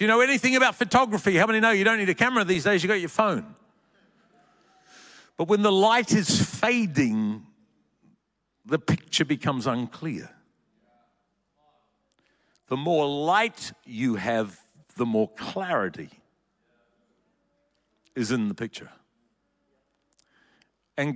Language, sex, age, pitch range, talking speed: English, male, 50-69, 135-200 Hz, 120 wpm